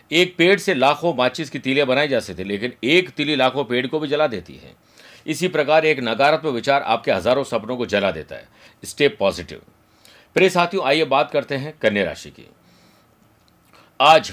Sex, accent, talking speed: male, native, 185 wpm